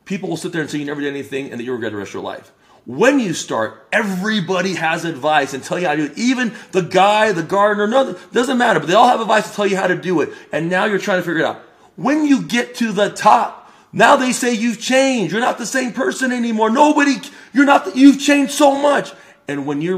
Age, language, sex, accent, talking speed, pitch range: 40-59, English, male, American, 260 wpm, 165-230 Hz